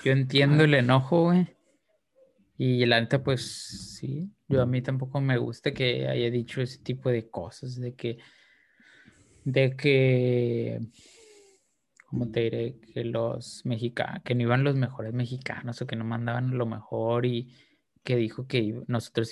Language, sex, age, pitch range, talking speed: Spanish, male, 20-39, 120-150 Hz, 155 wpm